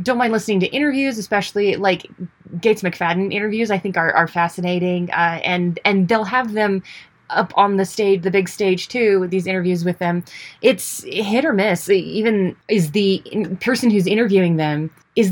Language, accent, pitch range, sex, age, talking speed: English, American, 175-215 Hz, female, 20-39, 180 wpm